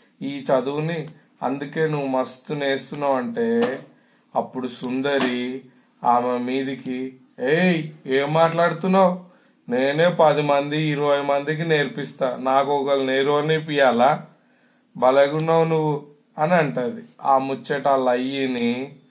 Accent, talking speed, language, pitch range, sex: native, 100 wpm, Telugu, 135-170 Hz, male